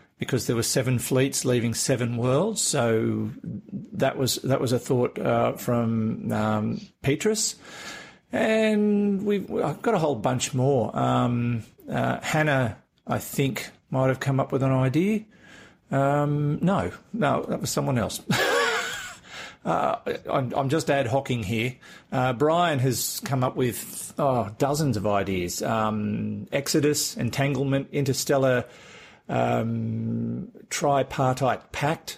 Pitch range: 115-140 Hz